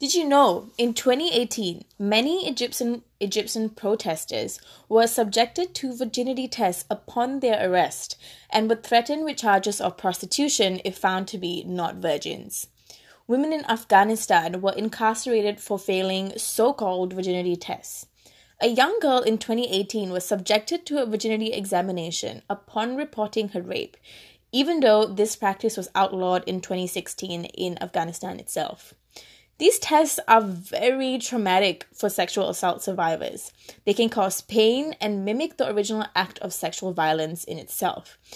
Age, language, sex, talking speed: 20-39, English, female, 140 wpm